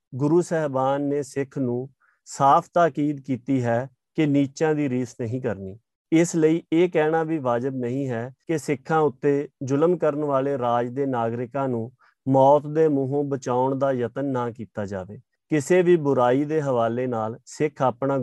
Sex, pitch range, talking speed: male, 125-150 Hz, 165 wpm